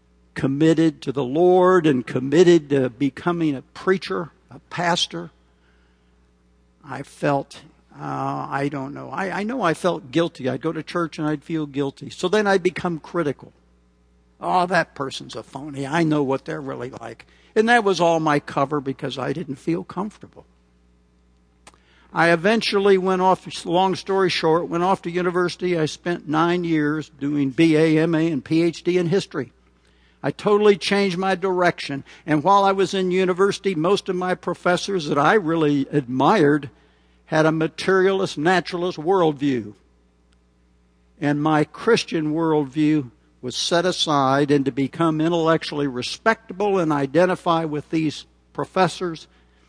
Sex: male